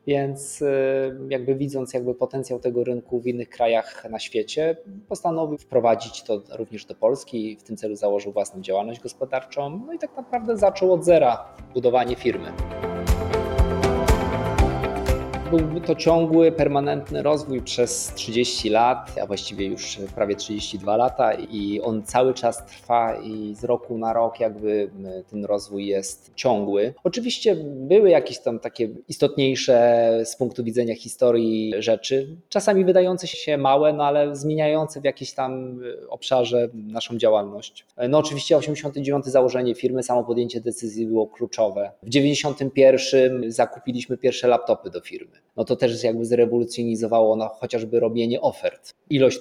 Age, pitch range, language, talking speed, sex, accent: 20-39, 115-145 Hz, Polish, 140 wpm, male, native